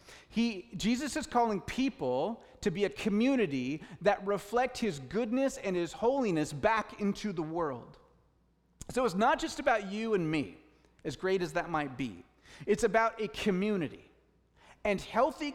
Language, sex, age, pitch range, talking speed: English, male, 30-49, 180-235 Hz, 155 wpm